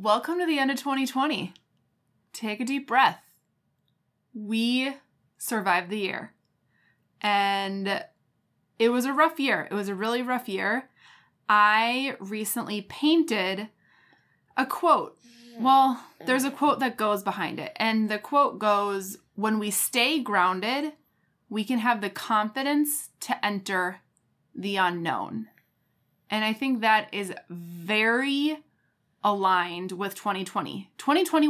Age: 20-39